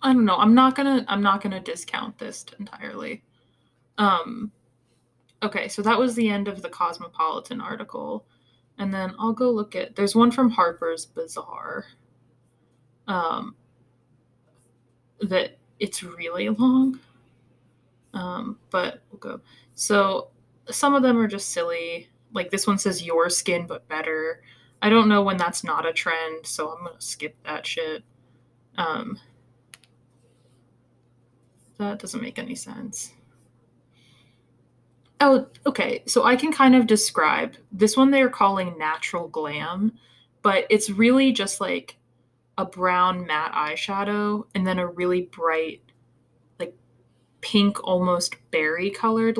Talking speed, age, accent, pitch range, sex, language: 135 wpm, 20-39, American, 135-225 Hz, female, English